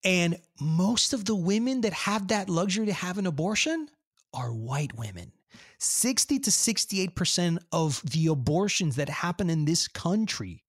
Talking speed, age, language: 150 wpm, 30-49, English